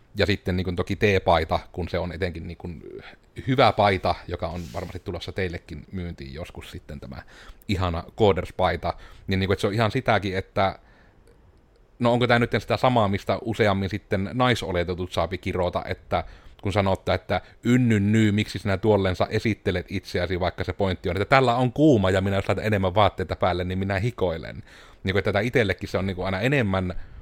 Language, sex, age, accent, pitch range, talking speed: Finnish, male, 30-49, native, 90-110 Hz, 185 wpm